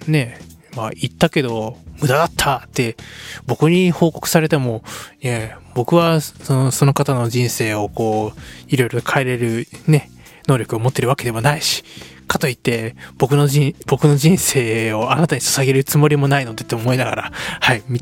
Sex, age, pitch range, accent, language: male, 20-39, 125-175 Hz, native, Japanese